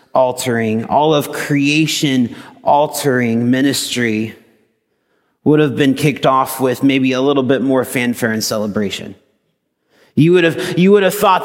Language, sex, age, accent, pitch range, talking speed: English, male, 30-49, American, 130-170 Hz, 140 wpm